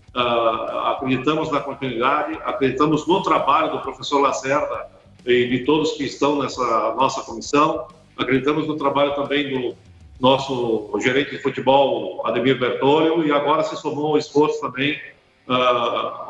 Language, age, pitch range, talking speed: Portuguese, 50-69, 135-155 Hz, 140 wpm